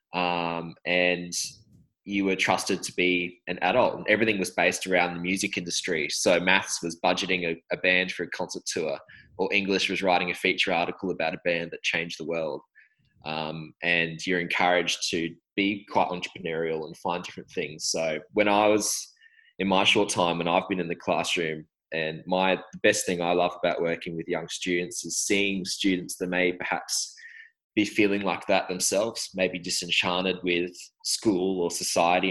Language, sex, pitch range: English, male, 85-95 Hz